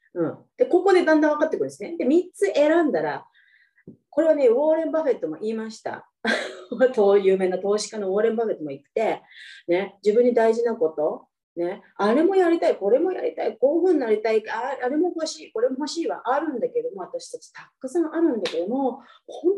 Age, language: 30-49, Japanese